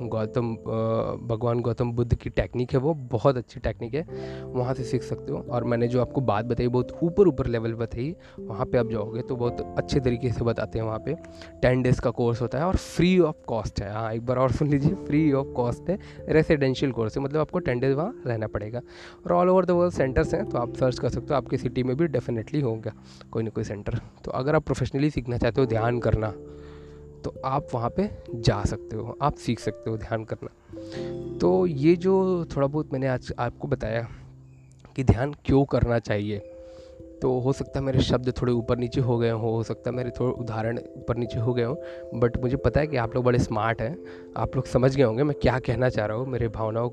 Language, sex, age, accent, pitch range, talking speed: Hindi, male, 20-39, native, 115-135 Hz, 230 wpm